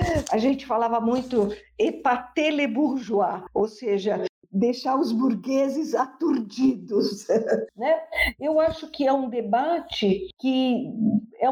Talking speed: 115 wpm